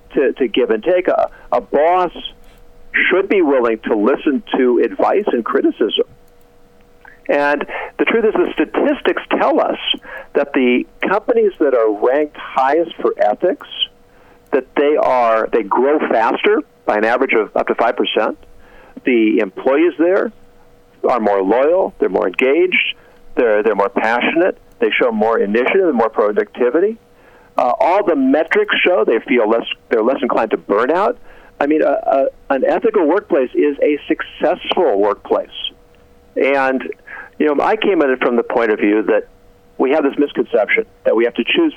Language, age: English, 50-69